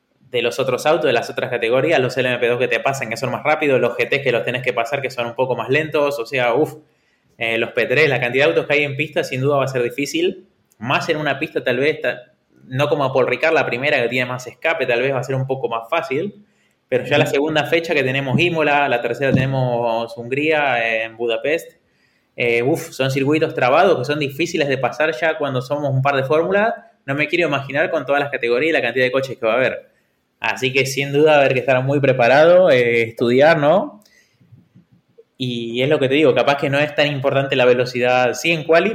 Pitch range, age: 120-150 Hz, 20-39